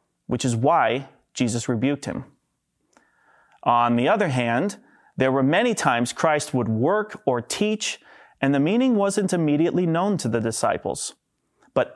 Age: 30-49